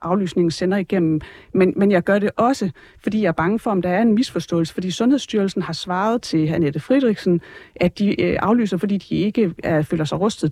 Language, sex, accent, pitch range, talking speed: Danish, female, native, 165-215 Hz, 205 wpm